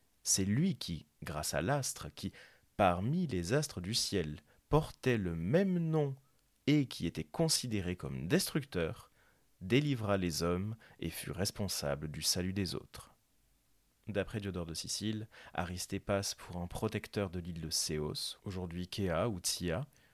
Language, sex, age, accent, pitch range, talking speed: French, male, 30-49, French, 90-130 Hz, 145 wpm